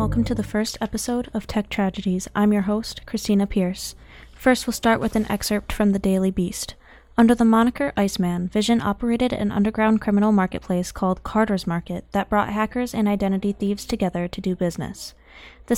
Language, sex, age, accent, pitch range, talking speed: English, female, 20-39, American, 185-220 Hz, 180 wpm